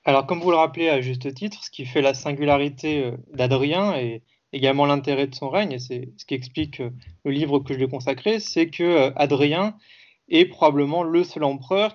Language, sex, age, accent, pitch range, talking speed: French, male, 30-49, French, 135-170 Hz, 195 wpm